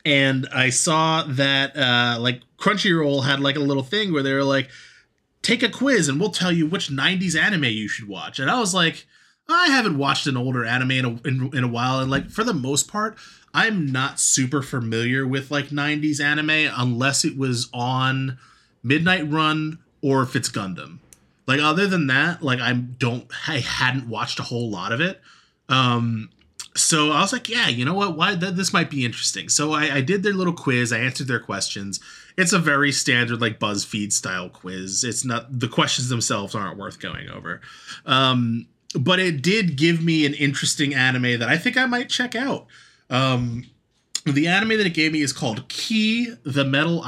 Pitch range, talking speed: 125-160 Hz, 195 wpm